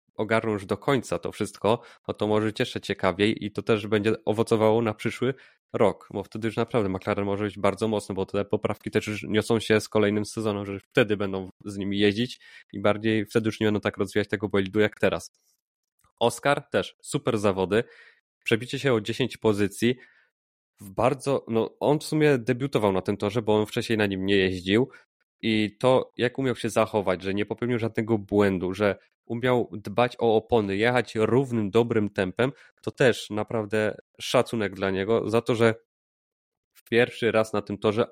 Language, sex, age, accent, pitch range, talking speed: Polish, male, 20-39, native, 100-115 Hz, 185 wpm